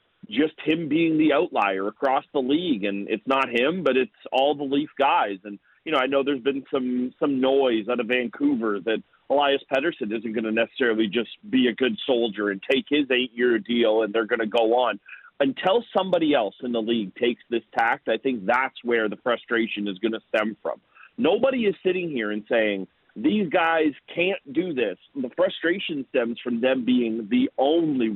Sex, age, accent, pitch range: male, 40-59, American, 120-170 Hz